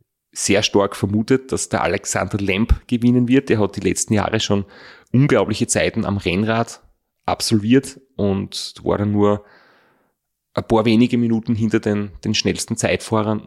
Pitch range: 100-115 Hz